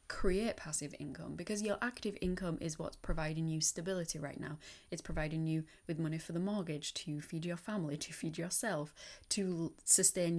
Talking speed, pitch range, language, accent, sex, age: 180 wpm, 150-185 Hz, English, British, female, 10-29